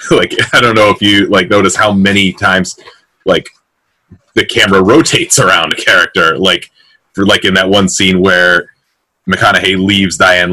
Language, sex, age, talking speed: English, male, 30-49, 165 wpm